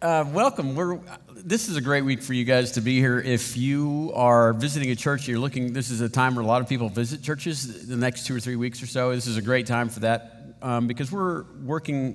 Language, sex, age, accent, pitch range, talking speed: English, male, 50-69, American, 120-150 Hz, 255 wpm